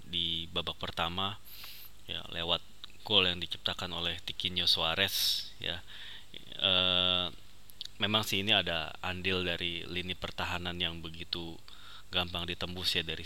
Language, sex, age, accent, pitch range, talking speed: Indonesian, male, 20-39, native, 85-100 Hz, 120 wpm